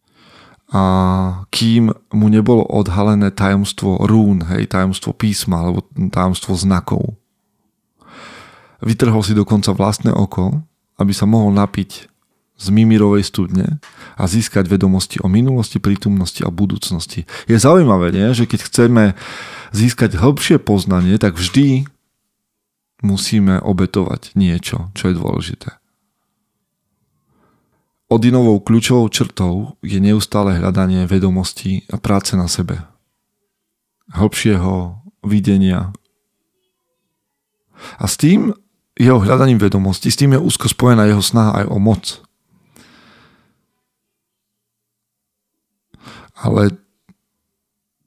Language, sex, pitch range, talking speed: Slovak, male, 95-115 Hz, 100 wpm